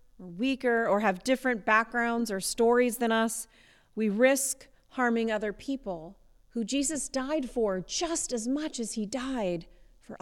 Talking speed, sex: 145 wpm, female